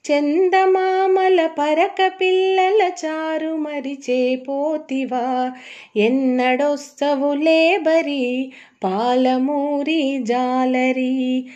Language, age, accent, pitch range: Telugu, 30-49, native, 260-320 Hz